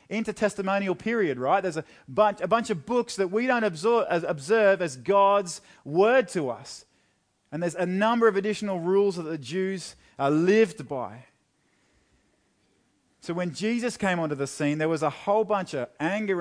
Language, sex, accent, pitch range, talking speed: English, male, Australian, 135-190 Hz, 175 wpm